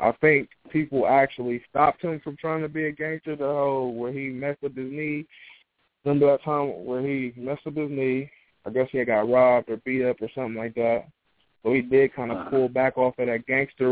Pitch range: 115-130 Hz